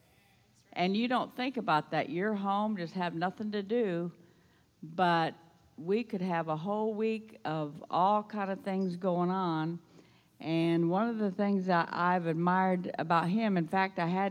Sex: female